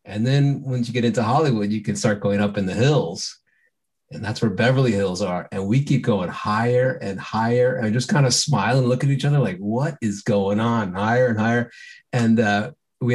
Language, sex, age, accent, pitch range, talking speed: English, male, 30-49, American, 100-130 Hz, 225 wpm